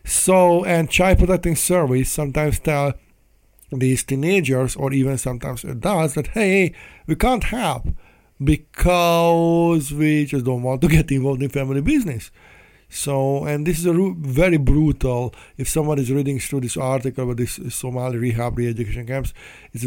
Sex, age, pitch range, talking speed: male, 50-69, 130-155 Hz, 150 wpm